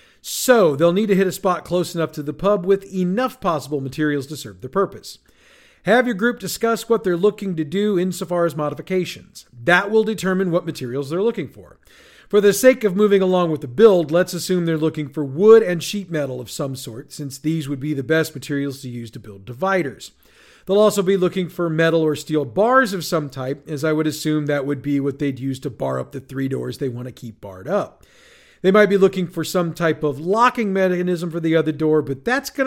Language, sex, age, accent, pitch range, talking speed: English, male, 40-59, American, 145-195 Hz, 230 wpm